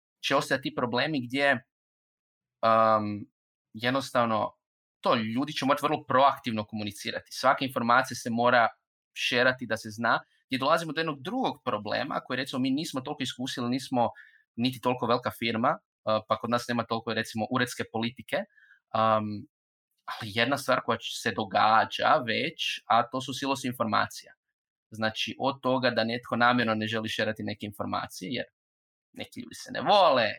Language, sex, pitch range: Croatian, male, 110-125 Hz